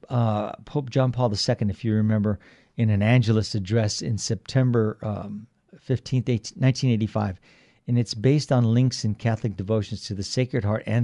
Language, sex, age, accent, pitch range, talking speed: English, male, 50-69, American, 110-130 Hz, 165 wpm